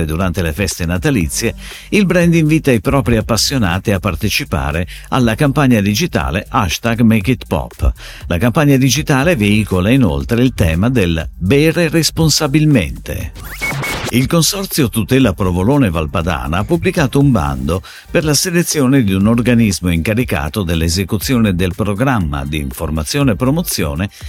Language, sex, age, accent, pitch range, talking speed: Italian, male, 50-69, native, 90-135 Hz, 130 wpm